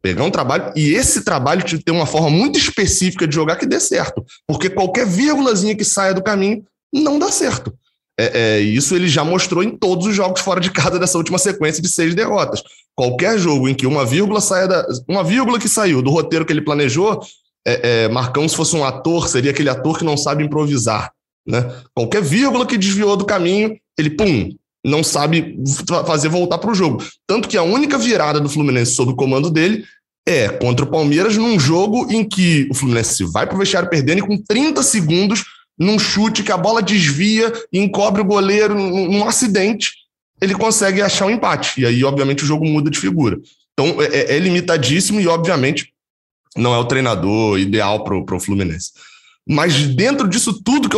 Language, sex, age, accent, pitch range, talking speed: Portuguese, male, 20-39, Brazilian, 150-205 Hz, 195 wpm